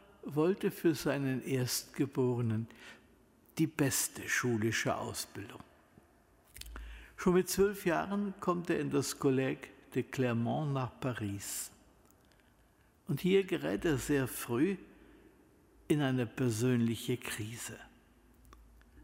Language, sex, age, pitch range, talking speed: German, male, 60-79, 120-150 Hz, 100 wpm